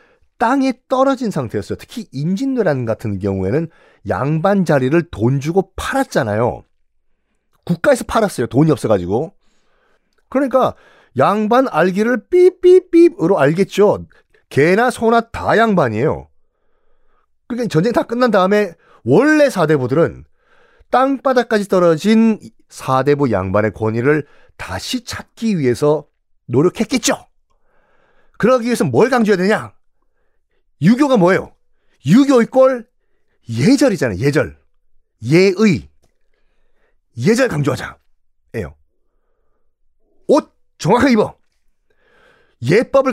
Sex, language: male, Korean